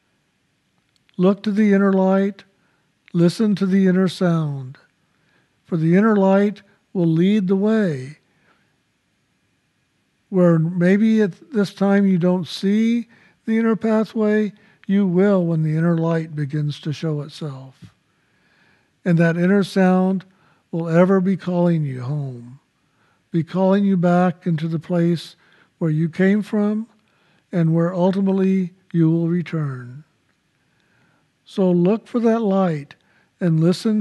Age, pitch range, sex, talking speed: 60-79, 160-195 Hz, male, 130 wpm